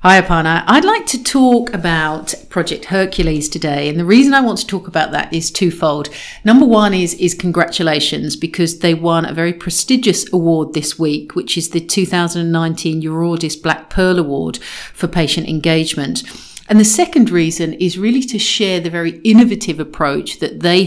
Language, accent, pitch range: English, British, 165-220 Hz